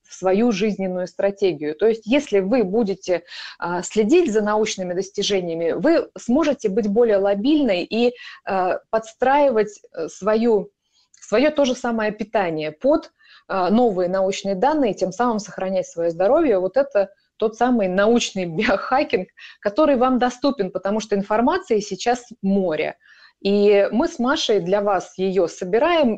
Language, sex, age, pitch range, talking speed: Russian, female, 20-39, 185-240 Hz, 130 wpm